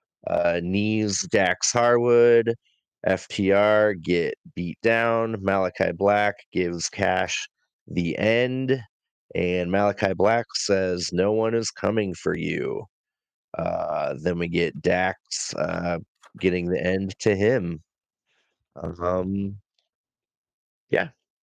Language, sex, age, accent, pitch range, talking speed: English, male, 30-49, American, 90-110 Hz, 105 wpm